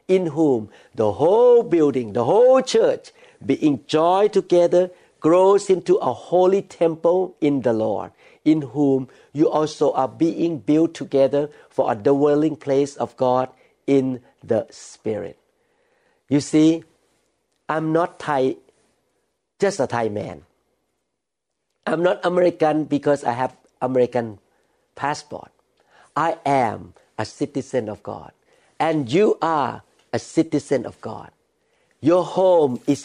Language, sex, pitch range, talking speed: English, male, 135-185 Hz, 125 wpm